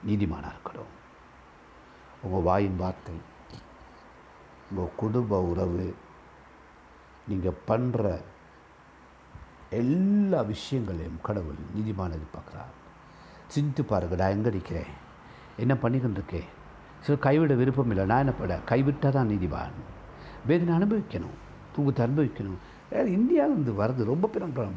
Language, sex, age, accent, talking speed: Tamil, male, 60-79, native, 95 wpm